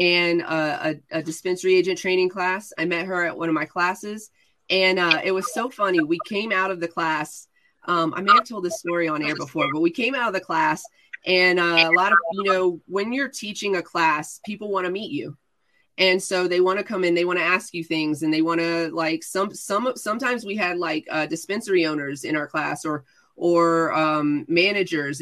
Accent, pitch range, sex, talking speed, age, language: American, 165-200 Hz, female, 230 wpm, 30-49, English